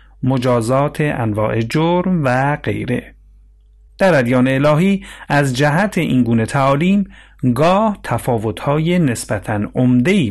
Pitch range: 110-155 Hz